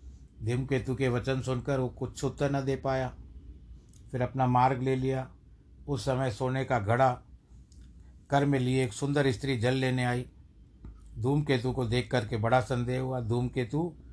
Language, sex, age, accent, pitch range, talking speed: Hindi, male, 60-79, native, 110-145 Hz, 155 wpm